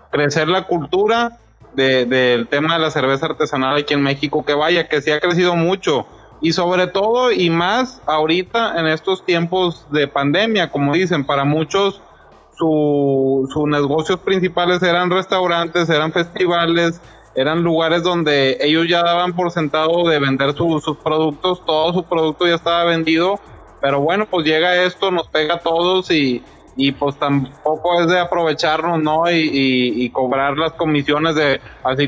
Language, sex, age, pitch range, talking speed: Spanish, male, 30-49, 145-175 Hz, 165 wpm